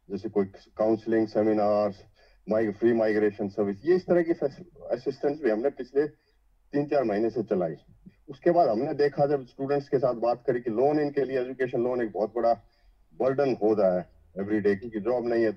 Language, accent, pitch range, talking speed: English, Indian, 110-145 Hz, 165 wpm